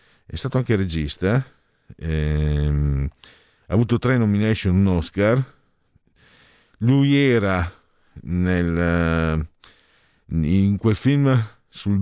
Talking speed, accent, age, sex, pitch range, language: 95 wpm, native, 50-69, male, 80-110 Hz, Italian